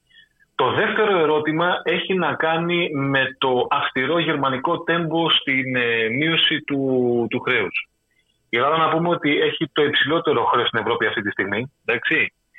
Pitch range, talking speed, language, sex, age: 130-210 Hz, 155 wpm, Greek, male, 30-49